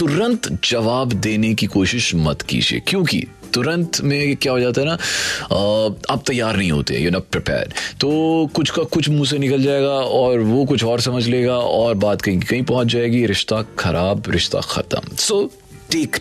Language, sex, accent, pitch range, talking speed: Hindi, male, native, 95-130 Hz, 180 wpm